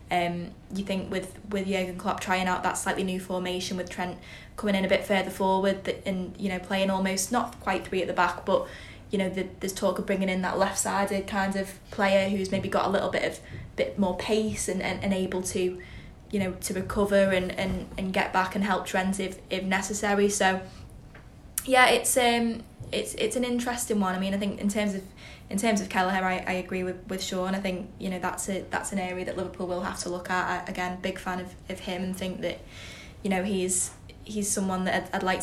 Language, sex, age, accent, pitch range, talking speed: English, female, 20-39, British, 180-195 Hz, 230 wpm